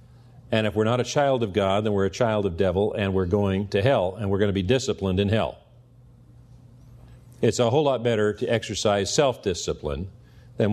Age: 50-69